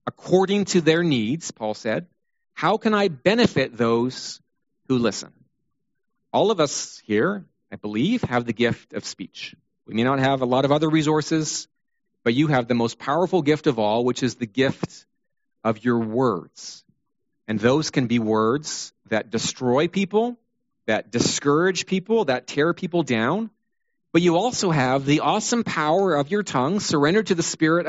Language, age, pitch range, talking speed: English, 40-59, 120-185 Hz, 170 wpm